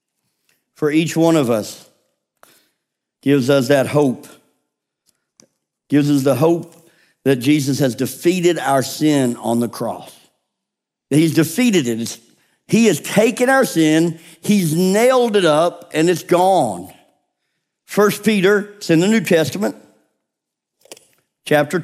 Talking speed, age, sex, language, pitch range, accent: 125 wpm, 50-69, male, English, 140-180 Hz, American